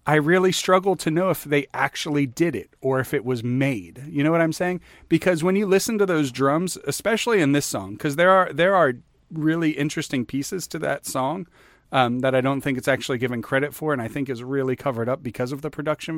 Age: 40-59